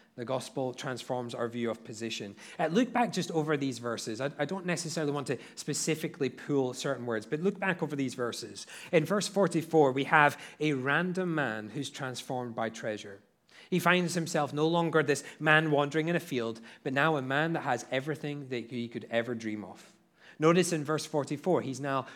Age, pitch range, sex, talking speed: 30-49, 120-160 Hz, male, 190 wpm